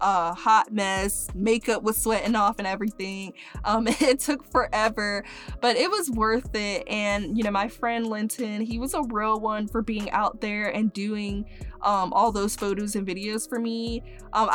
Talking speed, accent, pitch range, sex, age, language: 180 wpm, American, 205-240 Hz, female, 20-39, English